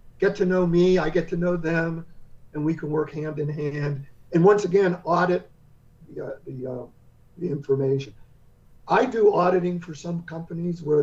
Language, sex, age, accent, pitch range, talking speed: English, male, 50-69, American, 145-190 Hz, 180 wpm